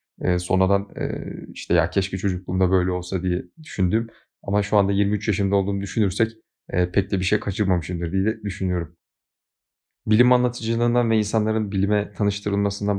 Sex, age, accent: male, 30-49, native